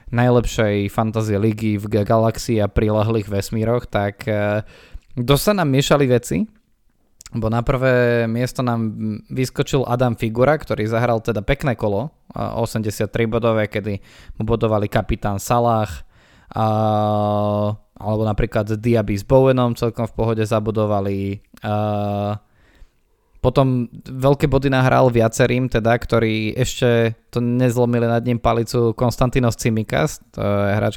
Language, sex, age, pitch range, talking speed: Slovak, male, 20-39, 105-120 Hz, 115 wpm